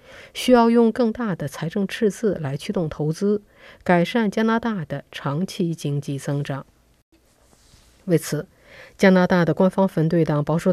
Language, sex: Chinese, female